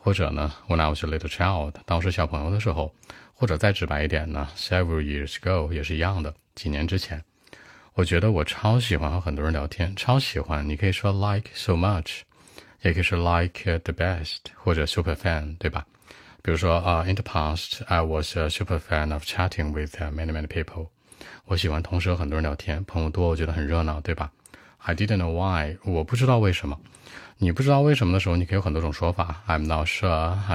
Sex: male